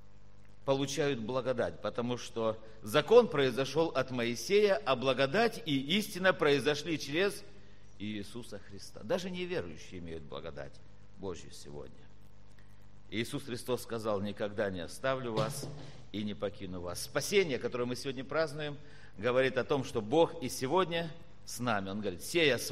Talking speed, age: 135 wpm, 50-69